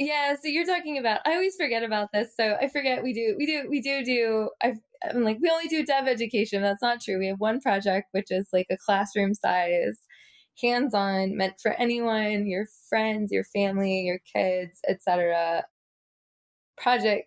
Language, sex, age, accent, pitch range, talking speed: English, female, 20-39, American, 185-240 Hz, 185 wpm